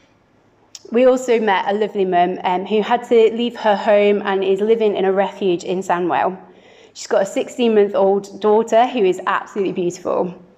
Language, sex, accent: English, female, British